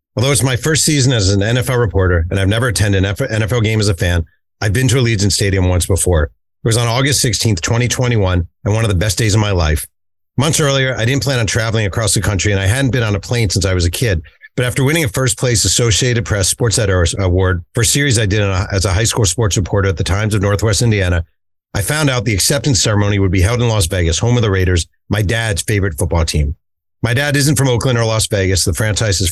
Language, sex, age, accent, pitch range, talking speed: English, male, 50-69, American, 95-120 Hz, 250 wpm